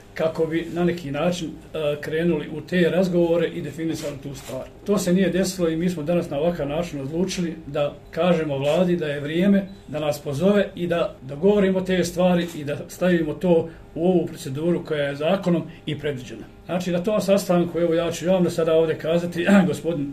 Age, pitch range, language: 40-59, 155-180 Hz, Croatian